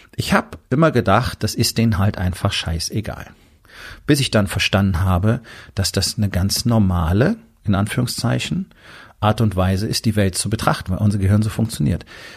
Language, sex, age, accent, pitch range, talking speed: German, male, 40-59, German, 95-115 Hz, 170 wpm